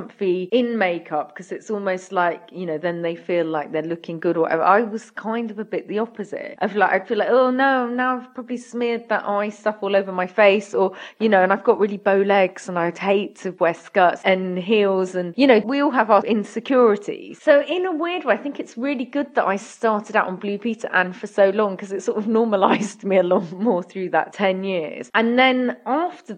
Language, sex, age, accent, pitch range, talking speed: English, female, 30-49, British, 190-245 Hz, 240 wpm